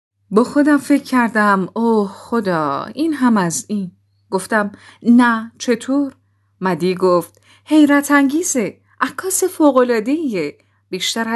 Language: Persian